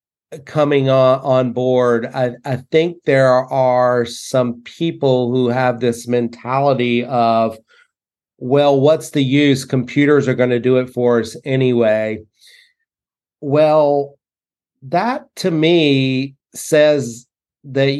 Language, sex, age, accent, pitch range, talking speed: English, male, 40-59, American, 130-160 Hz, 115 wpm